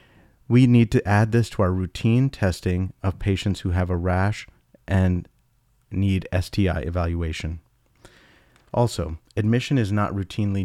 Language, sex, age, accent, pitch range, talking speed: English, male, 40-59, American, 90-110 Hz, 135 wpm